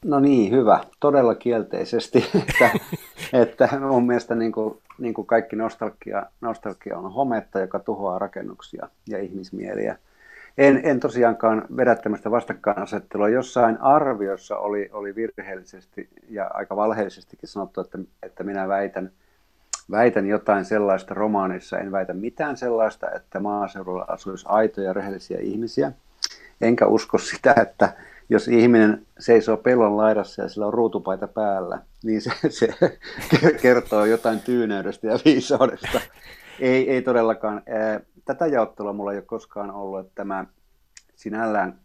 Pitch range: 95-115 Hz